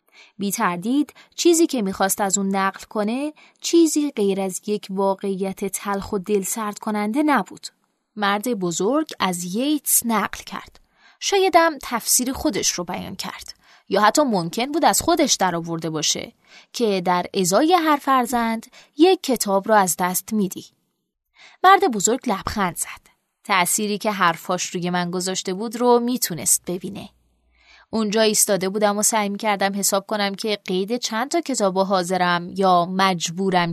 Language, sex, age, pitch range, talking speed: Persian, female, 20-39, 190-245 Hz, 140 wpm